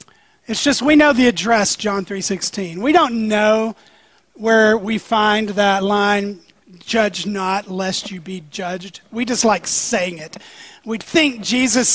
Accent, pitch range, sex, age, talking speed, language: American, 195-265 Hz, male, 30-49, 150 wpm, English